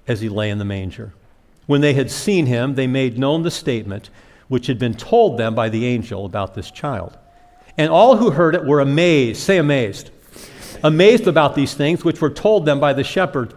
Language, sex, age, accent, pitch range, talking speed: English, male, 50-69, American, 120-175 Hz, 210 wpm